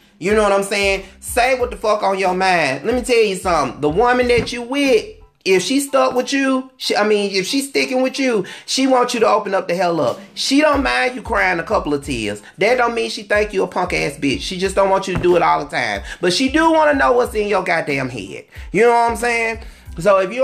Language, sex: English, male